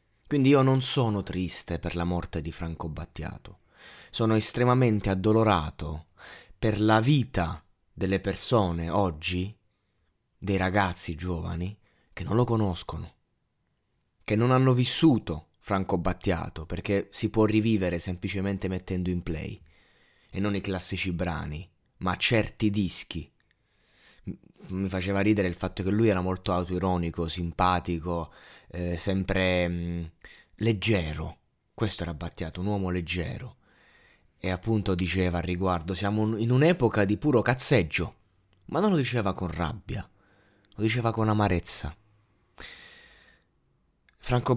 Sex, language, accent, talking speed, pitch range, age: male, Italian, native, 125 wpm, 90-115 Hz, 20-39